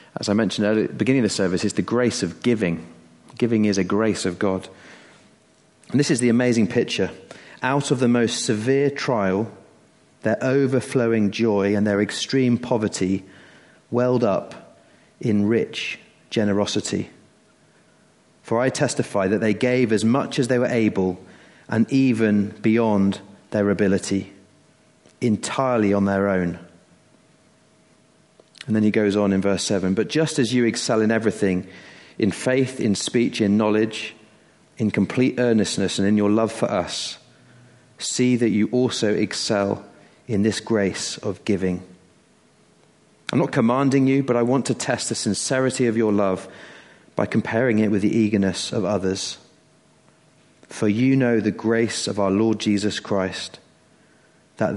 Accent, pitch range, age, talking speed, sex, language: British, 100-120 Hz, 30-49, 150 wpm, male, English